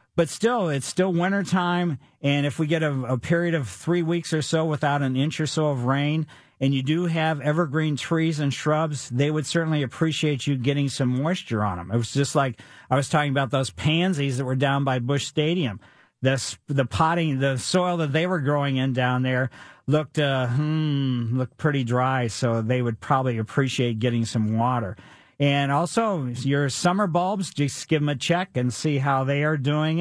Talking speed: 200 wpm